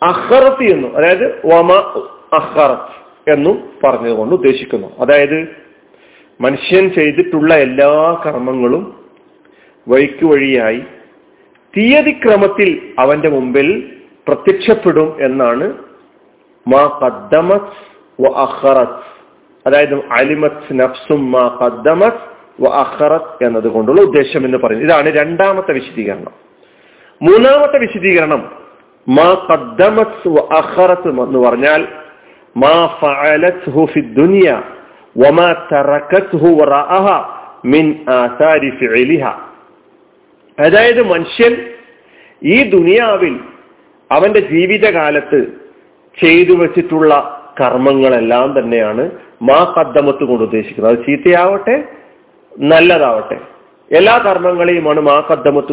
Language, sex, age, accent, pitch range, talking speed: Malayalam, male, 40-59, native, 140-205 Hz, 50 wpm